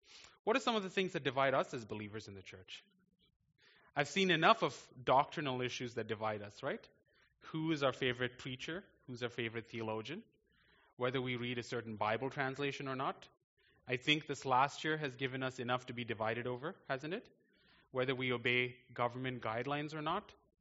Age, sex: 30-49, male